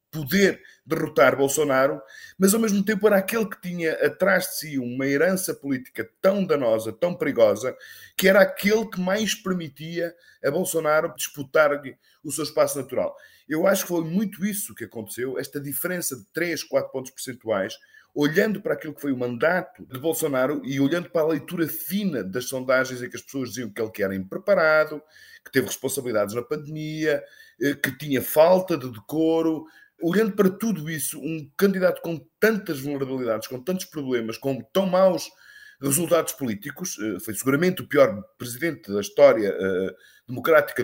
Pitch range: 135-190 Hz